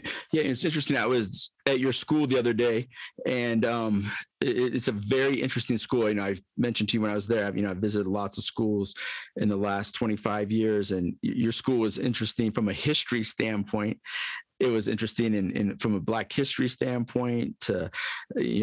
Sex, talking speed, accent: male, 200 wpm, American